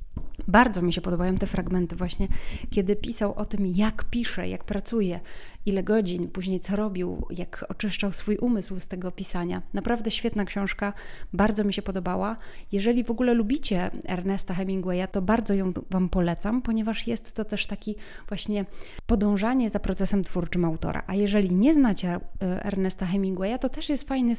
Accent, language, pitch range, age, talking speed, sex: native, Polish, 185-225 Hz, 20-39, 160 wpm, female